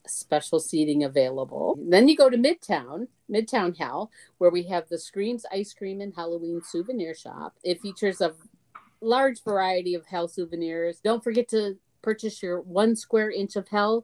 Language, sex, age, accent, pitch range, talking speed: English, female, 50-69, American, 170-215 Hz, 165 wpm